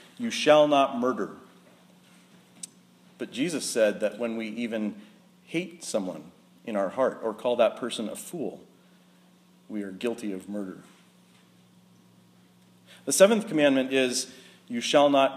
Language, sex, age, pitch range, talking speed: English, male, 40-59, 110-150 Hz, 135 wpm